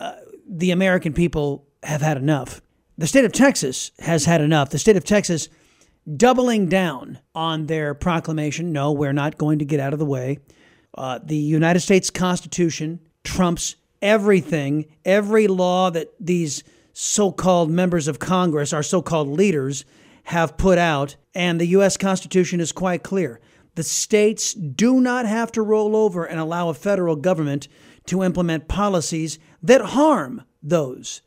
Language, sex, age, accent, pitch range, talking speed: English, male, 40-59, American, 155-195 Hz, 155 wpm